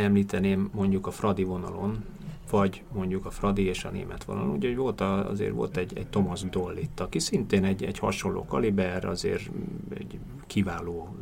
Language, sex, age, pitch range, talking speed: Hungarian, male, 30-49, 90-110 Hz, 165 wpm